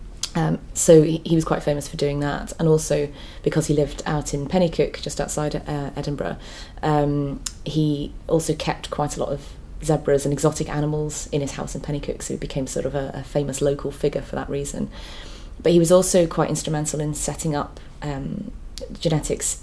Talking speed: 190 wpm